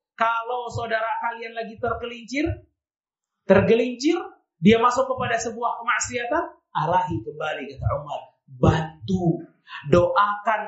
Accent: native